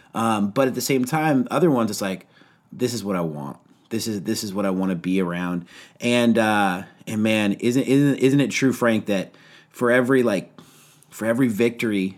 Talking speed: 205 wpm